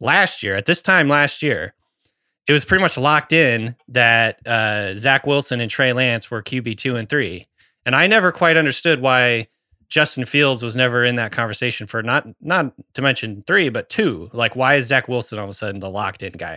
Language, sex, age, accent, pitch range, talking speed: English, male, 20-39, American, 110-135 Hz, 210 wpm